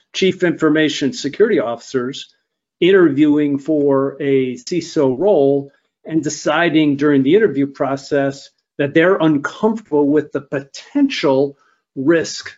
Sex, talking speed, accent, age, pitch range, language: male, 105 wpm, American, 50-69, 130-155 Hz, English